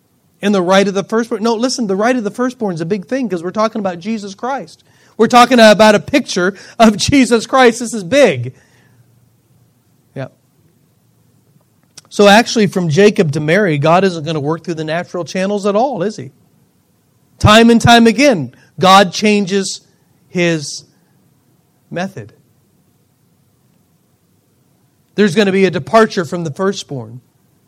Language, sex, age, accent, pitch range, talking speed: English, male, 40-59, American, 160-240 Hz, 155 wpm